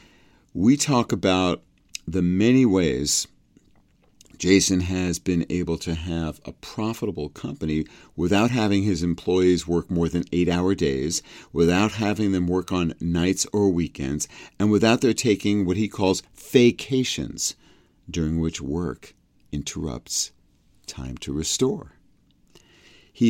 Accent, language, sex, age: American, English, male, 50-69